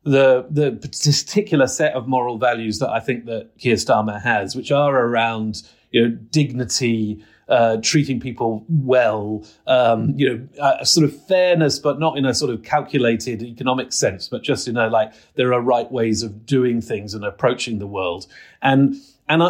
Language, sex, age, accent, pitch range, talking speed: English, male, 40-59, British, 115-140 Hz, 180 wpm